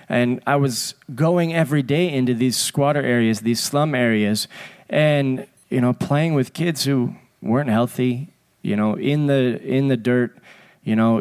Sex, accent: male, American